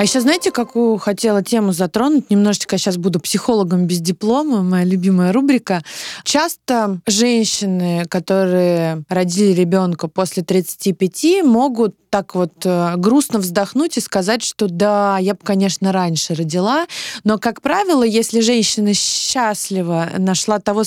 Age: 20-39